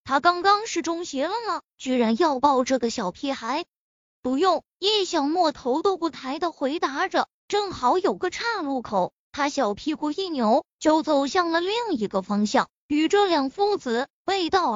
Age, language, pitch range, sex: 20-39, Chinese, 245-345 Hz, female